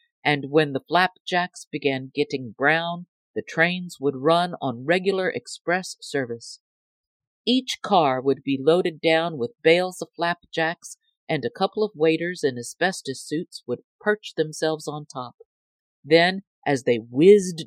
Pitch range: 135-180 Hz